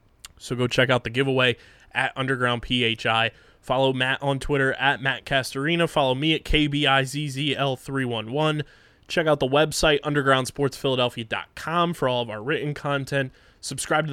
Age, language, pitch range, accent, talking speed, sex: 20-39, English, 125-150 Hz, American, 140 wpm, male